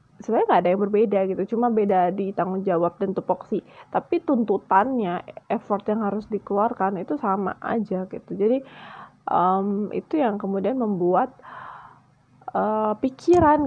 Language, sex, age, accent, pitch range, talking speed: Indonesian, female, 20-39, native, 195-230 Hz, 135 wpm